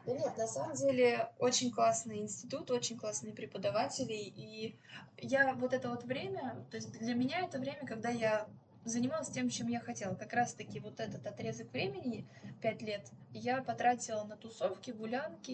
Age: 20-39